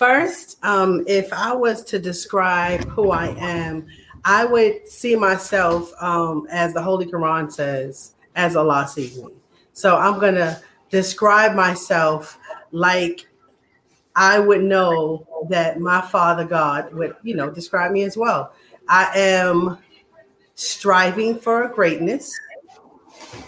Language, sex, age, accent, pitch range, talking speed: English, female, 30-49, American, 170-210 Hz, 125 wpm